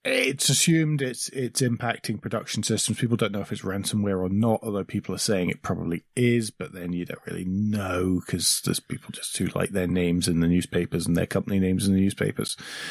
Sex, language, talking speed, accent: male, English, 215 wpm, British